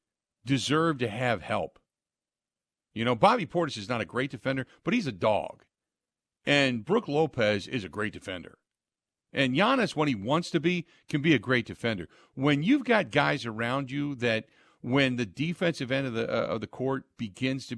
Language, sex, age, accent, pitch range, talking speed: English, male, 50-69, American, 105-140 Hz, 185 wpm